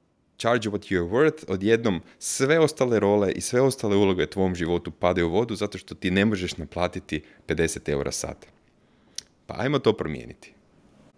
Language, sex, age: Croatian, male, 30-49